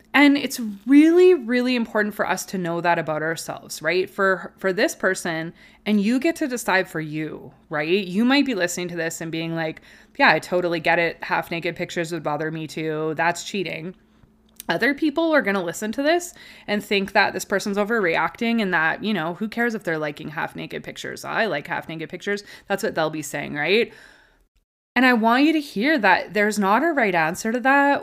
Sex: female